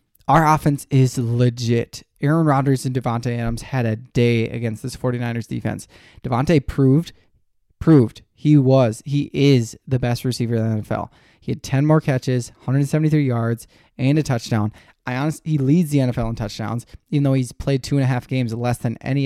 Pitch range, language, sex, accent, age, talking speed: 120-140 Hz, English, male, American, 20-39, 185 wpm